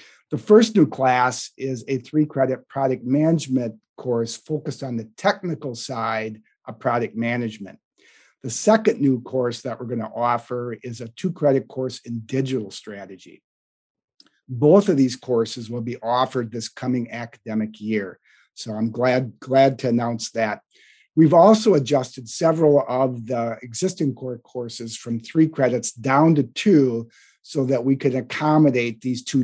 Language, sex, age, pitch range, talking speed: English, male, 50-69, 115-140 Hz, 155 wpm